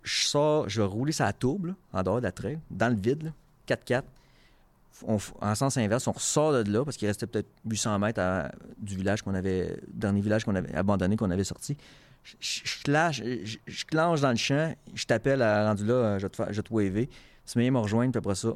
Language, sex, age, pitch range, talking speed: French, male, 30-49, 100-130 Hz, 220 wpm